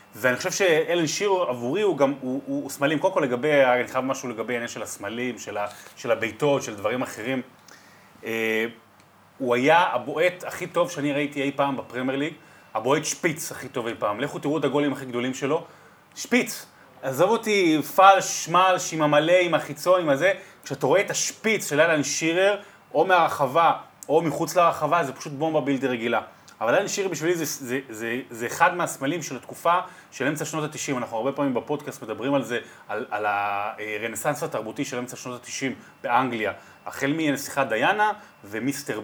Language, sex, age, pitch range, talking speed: Hebrew, male, 30-49, 125-170 Hz, 180 wpm